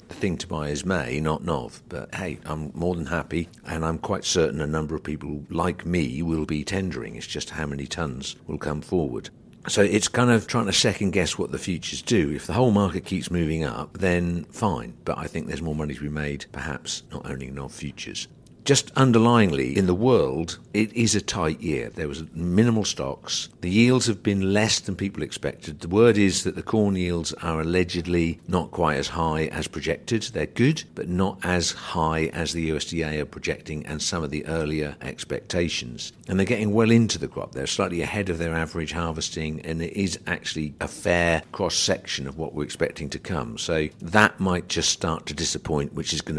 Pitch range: 75-95 Hz